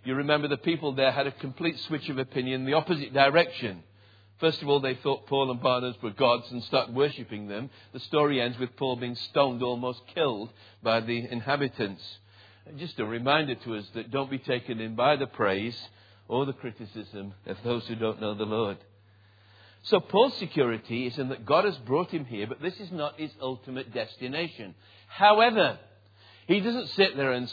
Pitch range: 105-145 Hz